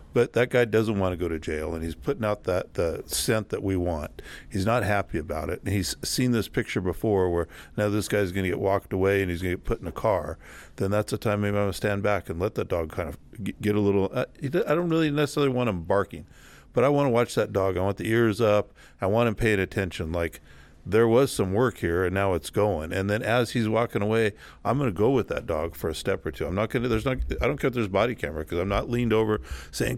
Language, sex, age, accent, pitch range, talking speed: English, male, 50-69, American, 90-115 Hz, 280 wpm